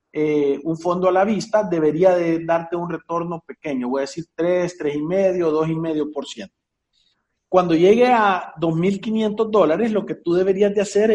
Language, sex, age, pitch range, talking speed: Spanish, male, 40-59, 160-220 Hz, 155 wpm